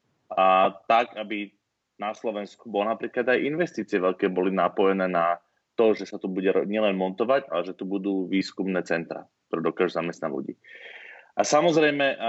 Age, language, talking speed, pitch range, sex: 30-49, Slovak, 150 wpm, 95-115 Hz, male